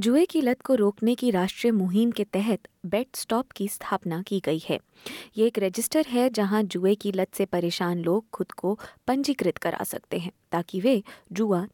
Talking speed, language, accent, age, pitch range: 190 wpm, Hindi, native, 20-39, 180-245 Hz